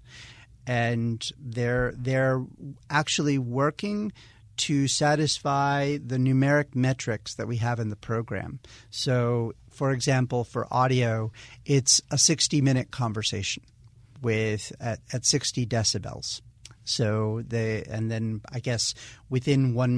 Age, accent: 40-59, American